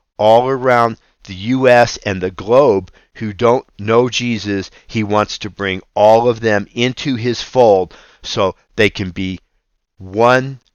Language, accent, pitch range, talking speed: English, American, 95-125 Hz, 145 wpm